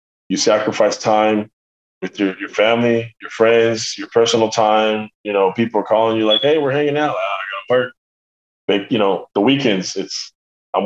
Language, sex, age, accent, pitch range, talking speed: English, male, 20-39, American, 95-115 Hz, 175 wpm